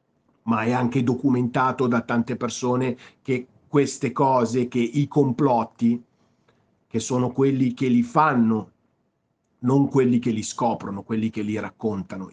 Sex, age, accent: male, 50-69, native